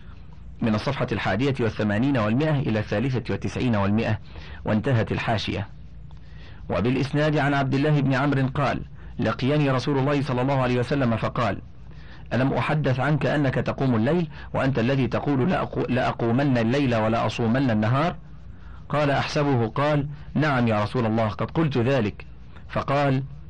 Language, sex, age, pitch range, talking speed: Arabic, male, 40-59, 110-145 Hz, 130 wpm